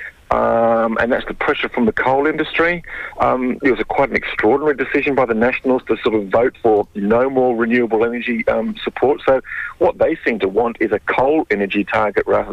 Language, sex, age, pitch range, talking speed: English, male, 50-69, 120-165 Hz, 205 wpm